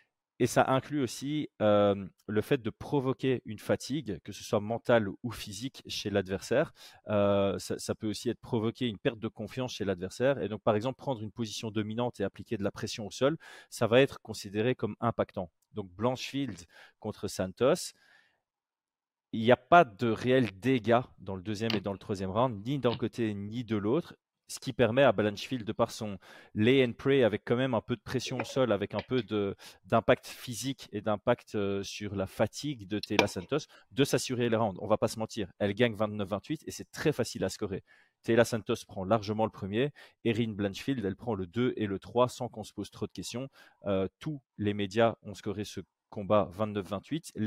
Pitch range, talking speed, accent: 100-125 Hz, 205 wpm, French